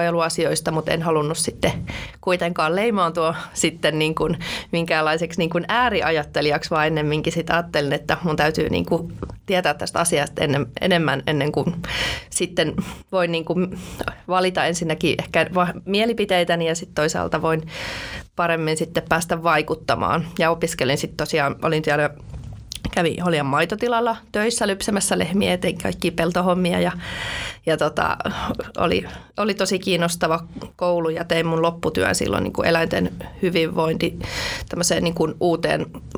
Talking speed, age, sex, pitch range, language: 135 wpm, 30-49, female, 155-180 Hz, Finnish